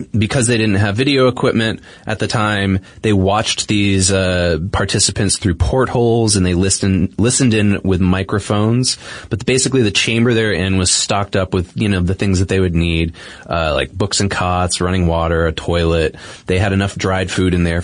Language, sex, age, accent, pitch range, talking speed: English, male, 20-39, American, 90-110 Hz, 190 wpm